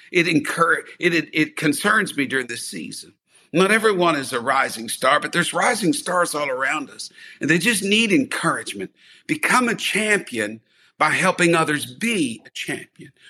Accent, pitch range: American, 140-205 Hz